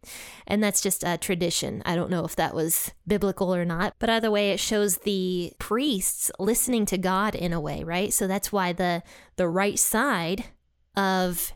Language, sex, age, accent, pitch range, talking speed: English, female, 20-39, American, 180-210 Hz, 185 wpm